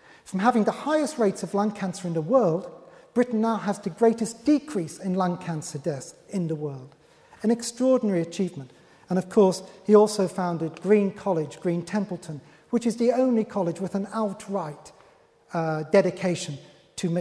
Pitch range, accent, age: 165-210 Hz, British, 40-59